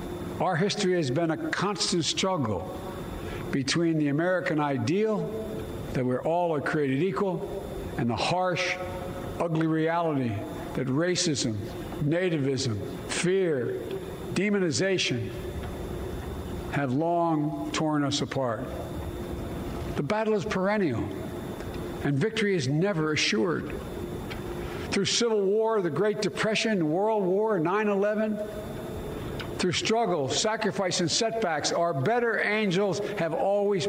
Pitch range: 155-210 Hz